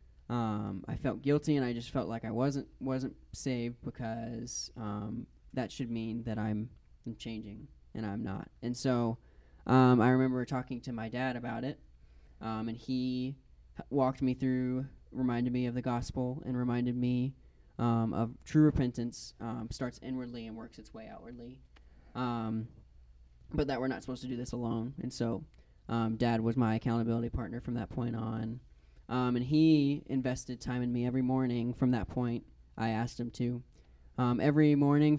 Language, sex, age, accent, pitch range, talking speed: English, male, 20-39, American, 115-130 Hz, 175 wpm